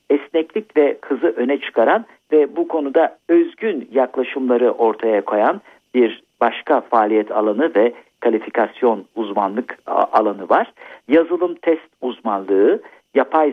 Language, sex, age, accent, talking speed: Turkish, male, 50-69, native, 110 wpm